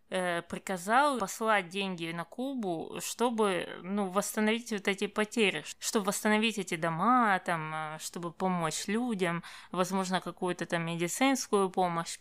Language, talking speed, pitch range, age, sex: Russian, 115 wpm, 175-220 Hz, 20-39, female